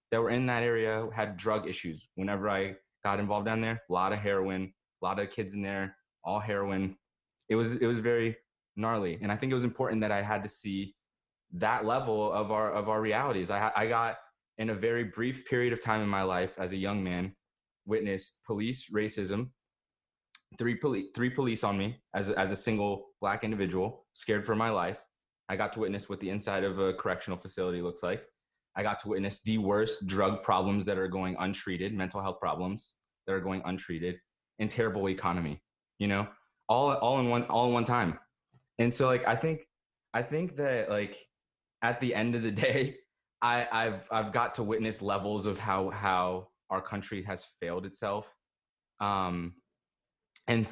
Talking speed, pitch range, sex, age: 195 wpm, 95-115 Hz, male, 20-39